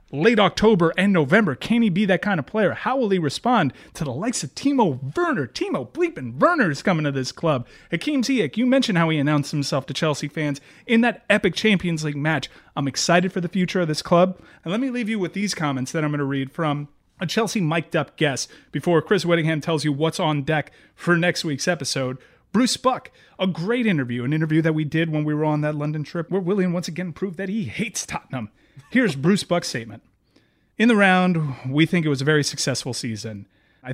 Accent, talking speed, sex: American, 225 wpm, male